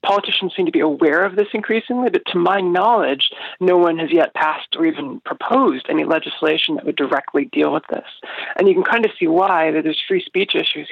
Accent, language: American, English